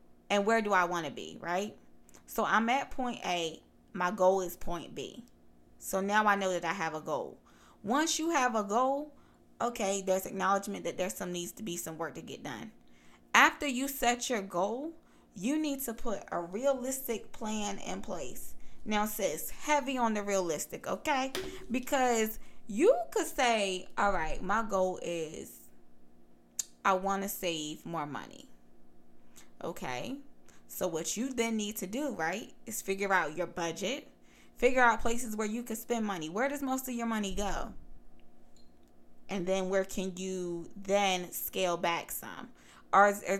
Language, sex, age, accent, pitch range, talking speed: English, female, 20-39, American, 175-245 Hz, 170 wpm